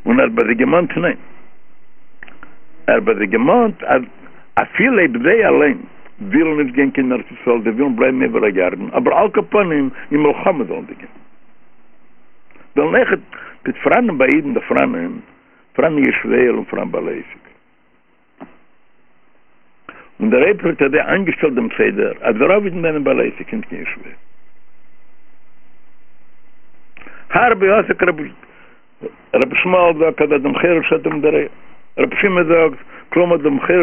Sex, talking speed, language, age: male, 70 wpm, English, 60-79